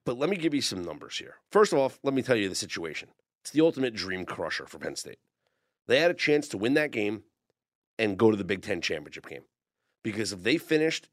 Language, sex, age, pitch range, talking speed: English, male, 40-59, 115-165 Hz, 245 wpm